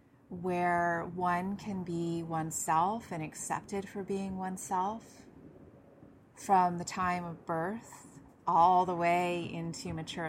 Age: 30-49